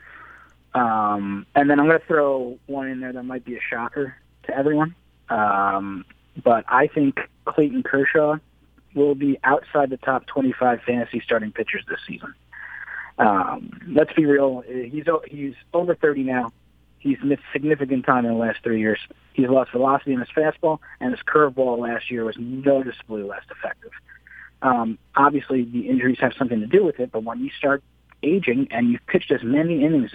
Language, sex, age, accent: English, male, 30-49, American